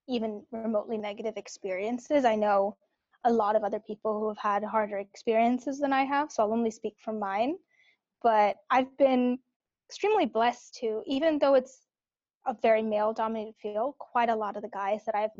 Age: 10-29